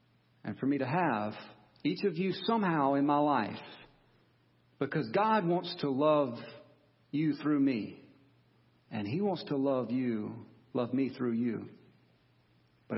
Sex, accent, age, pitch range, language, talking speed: male, American, 50-69, 105-145 Hz, English, 145 wpm